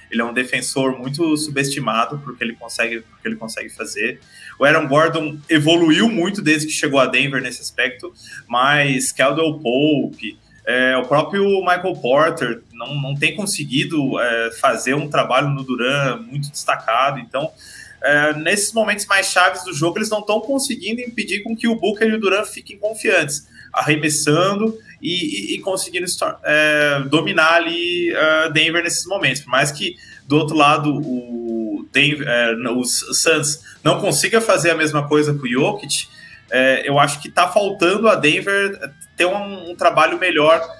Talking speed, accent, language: 165 wpm, Brazilian, Portuguese